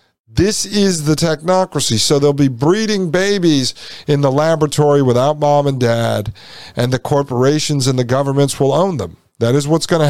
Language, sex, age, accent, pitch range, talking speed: English, male, 50-69, American, 130-185 Hz, 180 wpm